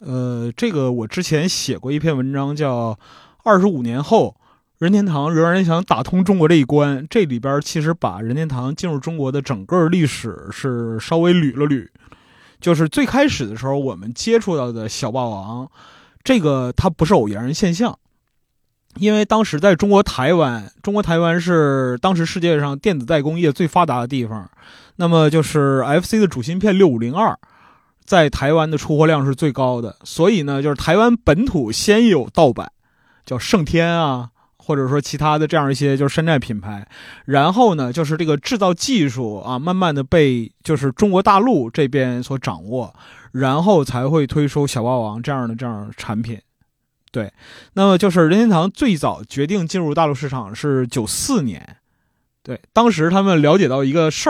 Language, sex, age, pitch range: Chinese, male, 20-39, 130-175 Hz